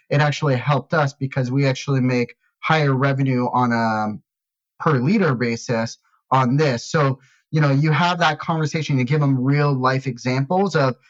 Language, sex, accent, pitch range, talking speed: English, male, American, 130-155 Hz, 170 wpm